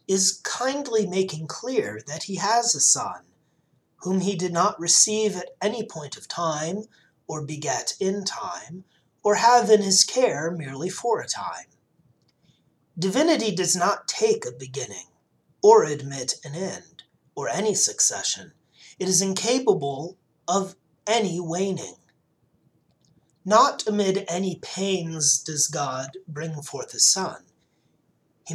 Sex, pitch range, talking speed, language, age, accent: male, 160-210 Hz, 130 wpm, English, 30-49, American